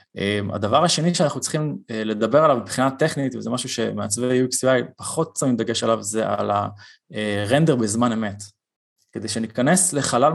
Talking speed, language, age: 150 wpm, Hebrew, 20-39